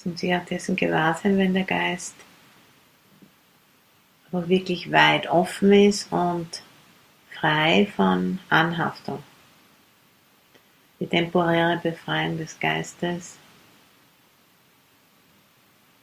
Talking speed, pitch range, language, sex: 80 wpm, 115-180 Hz, English, female